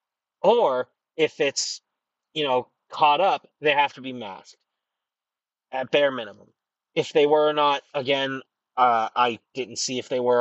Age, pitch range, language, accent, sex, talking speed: 30-49, 125-160 Hz, English, American, male, 160 wpm